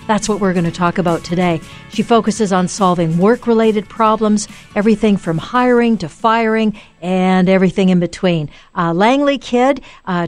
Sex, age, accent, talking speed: female, 50-69, American, 160 wpm